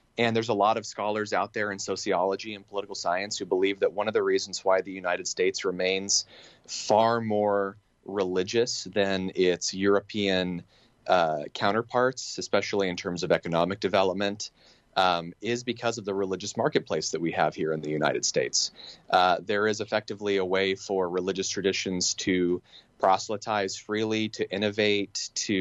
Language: English